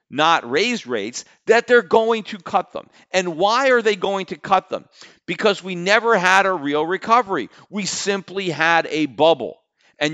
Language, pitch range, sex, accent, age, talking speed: English, 150-205 Hz, male, American, 50-69, 180 wpm